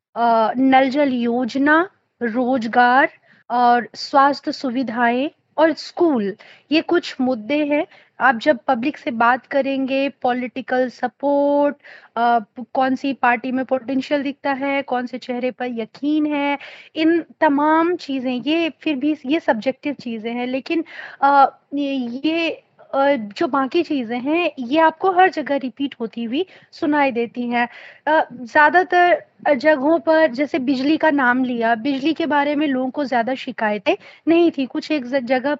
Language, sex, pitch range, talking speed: Hindi, female, 255-315 Hz, 145 wpm